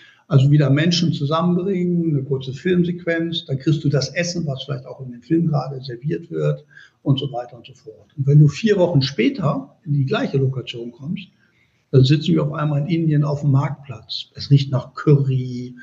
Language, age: German, 60-79